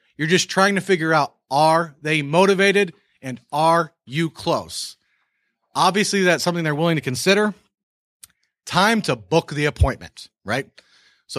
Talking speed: 140 wpm